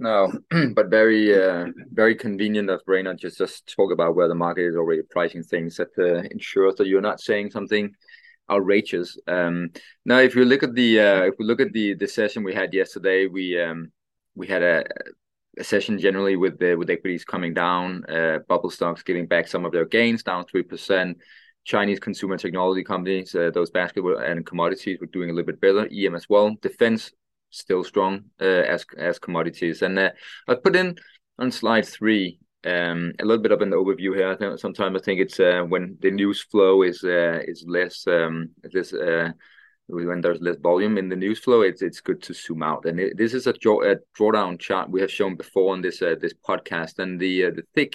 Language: English